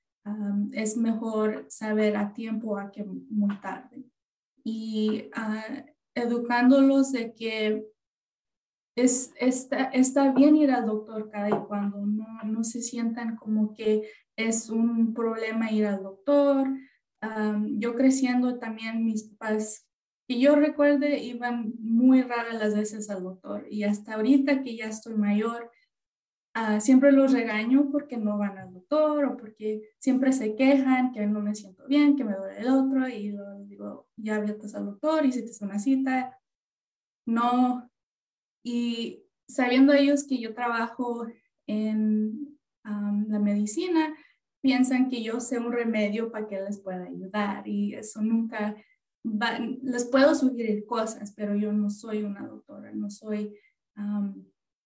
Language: English